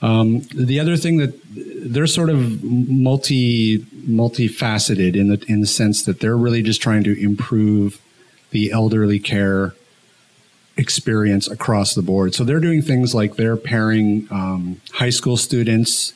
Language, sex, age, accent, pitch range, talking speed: English, male, 40-59, American, 100-120 Hz, 150 wpm